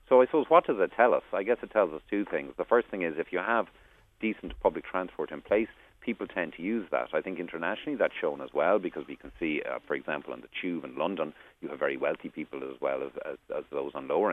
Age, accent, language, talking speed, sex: 40-59, Irish, English, 270 wpm, male